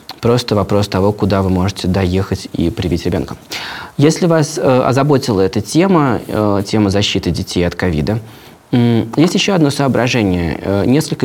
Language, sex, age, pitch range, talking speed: Russian, male, 20-39, 100-130 Hz, 150 wpm